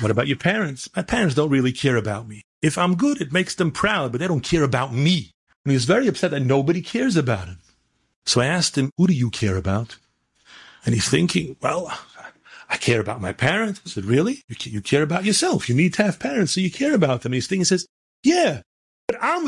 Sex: male